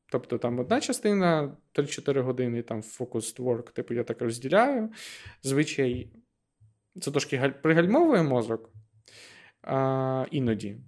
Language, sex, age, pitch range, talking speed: Ukrainian, male, 20-39, 120-155 Hz, 105 wpm